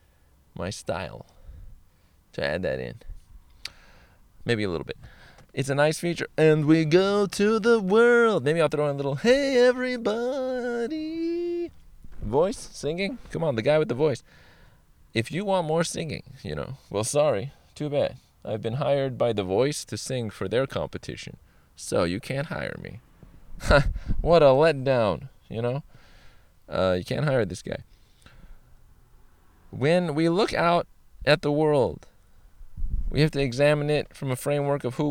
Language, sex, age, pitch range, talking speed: English, male, 20-39, 115-155 Hz, 155 wpm